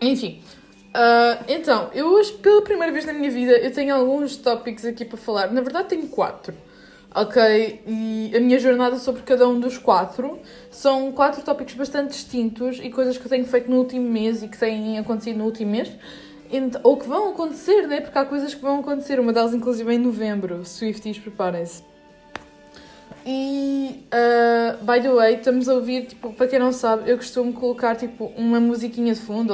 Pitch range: 220-270 Hz